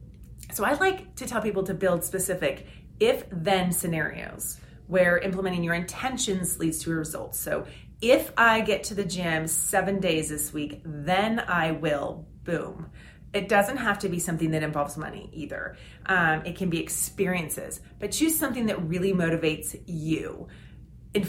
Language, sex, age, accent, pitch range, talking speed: English, female, 30-49, American, 160-205 Hz, 160 wpm